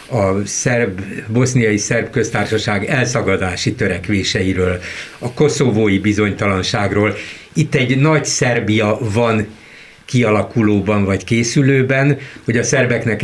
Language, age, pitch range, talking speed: Hungarian, 60-79, 105-135 Hz, 90 wpm